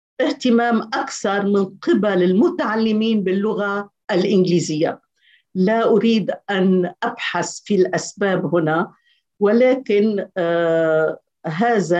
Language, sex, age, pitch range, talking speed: Arabic, female, 50-69, 175-225 Hz, 80 wpm